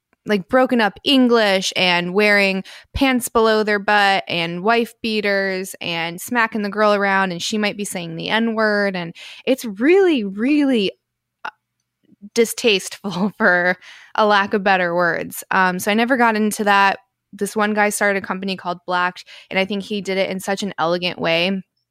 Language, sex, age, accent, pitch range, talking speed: English, female, 20-39, American, 170-210 Hz, 175 wpm